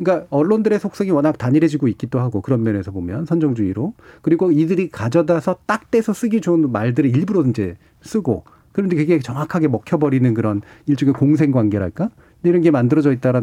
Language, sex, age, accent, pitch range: Korean, male, 40-59, native, 120-175 Hz